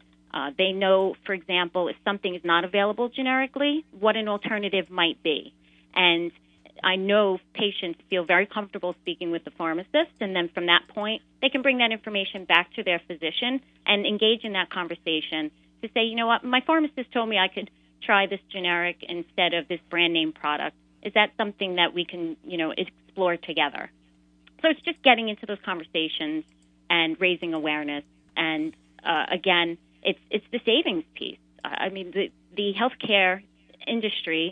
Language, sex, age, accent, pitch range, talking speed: English, female, 30-49, American, 160-215 Hz, 170 wpm